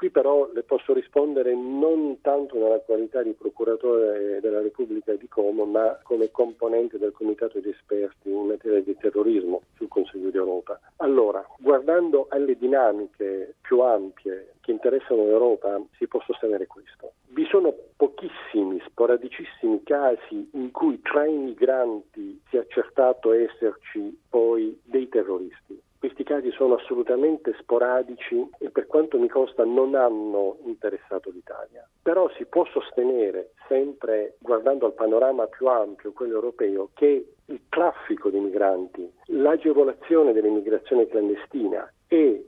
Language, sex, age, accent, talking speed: Italian, male, 40-59, native, 135 wpm